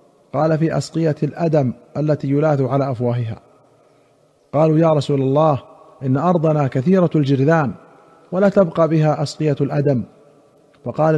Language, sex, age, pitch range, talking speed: Arabic, male, 50-69, 130-155 Hz, 120 wpm